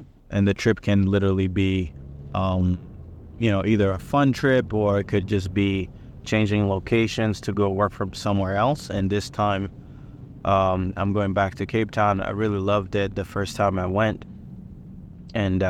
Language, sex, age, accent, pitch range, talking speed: English, male, 20-39, American, 95-115 Hz, 175 wpm